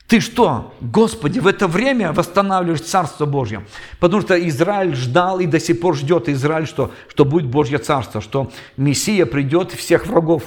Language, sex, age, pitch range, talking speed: Russian, male, 50-69, 135-180 Hz, 165 wpm